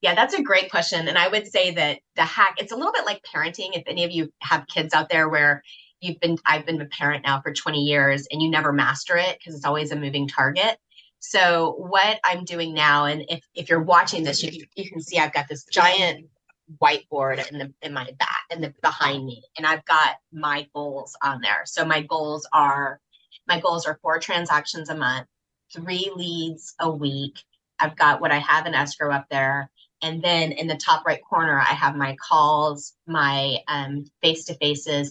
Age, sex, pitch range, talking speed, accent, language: 20-39, female, 145-160 Hz, 205 wpm, American, English